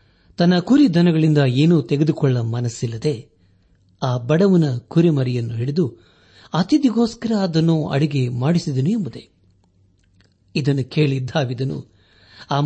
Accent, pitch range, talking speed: native, 115-160 Hz, 80 wpm